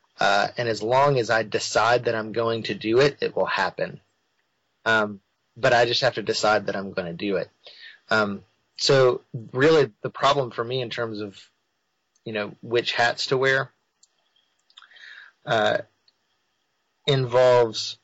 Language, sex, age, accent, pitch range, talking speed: English, male, 30-49, American, 110-130 Hz, 155 wpm